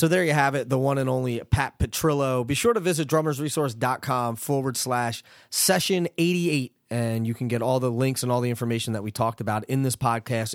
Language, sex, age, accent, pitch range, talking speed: English, male, 30-49, American, 110-140 Hz, 215 wpm